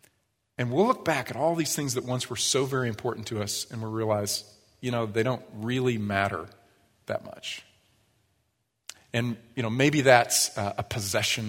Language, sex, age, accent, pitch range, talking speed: English, male, 40-59, American, 105-125 Hz, 185 wpm